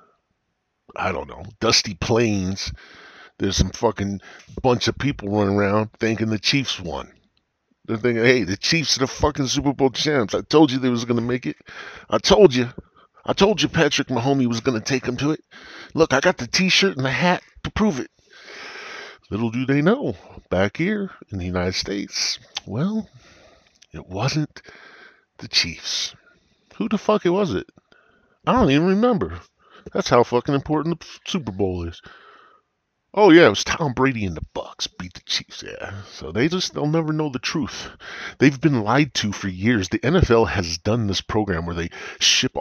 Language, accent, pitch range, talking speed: English, American, 100-145 Hz, 185 wpm